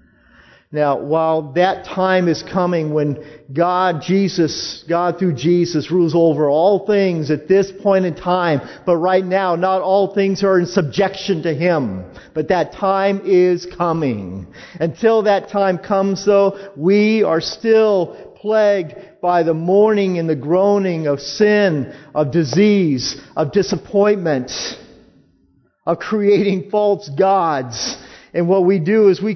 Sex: male